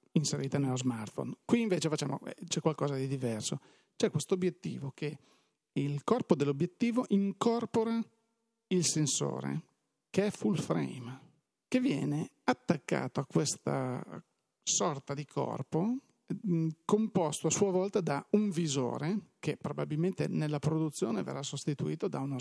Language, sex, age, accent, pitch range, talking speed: Italian, male, 40-59, native, 135-180 Hz, 130 wpm